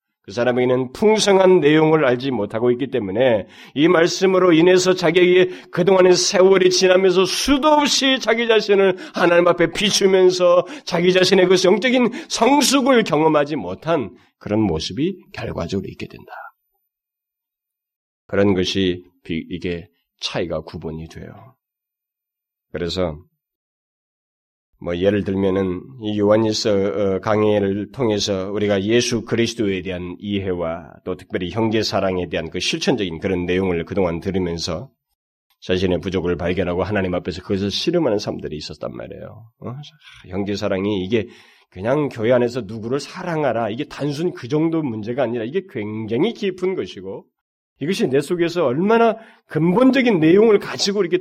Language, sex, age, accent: Korean, male, 30-49, native